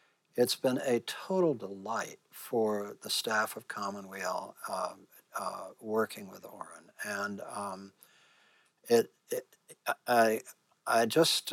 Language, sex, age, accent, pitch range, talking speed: English, male, 60-79, American, 105-120 Hz, 115 wpm